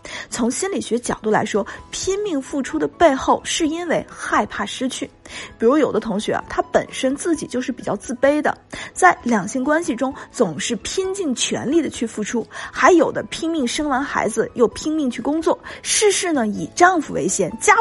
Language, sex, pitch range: Chinese, female, 220-325 Hz